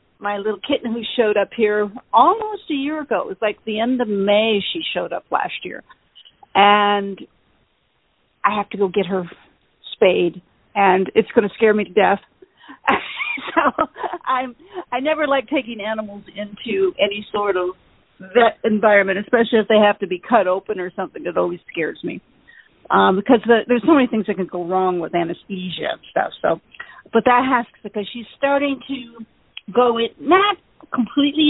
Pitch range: 200-260 Hz